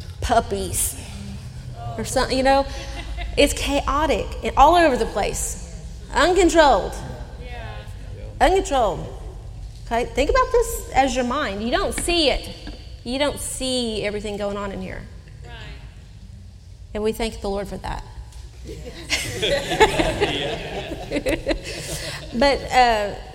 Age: 30-49